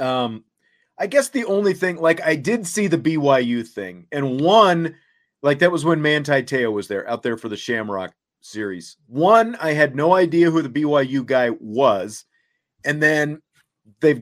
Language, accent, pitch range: English, American, 125-165 Hz